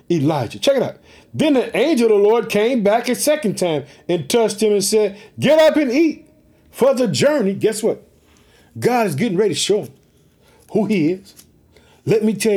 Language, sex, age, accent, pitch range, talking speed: English, male, 50-69, American, 195-250 Hz, 195 wpm